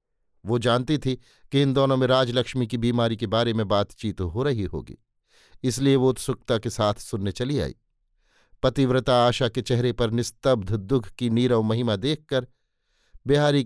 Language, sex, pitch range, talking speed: Hindi, male, 115-130 Hz, 165 wpm